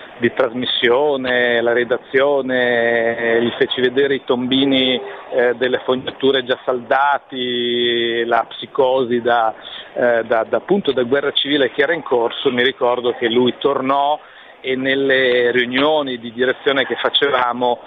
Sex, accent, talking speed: male, native, 130 wpm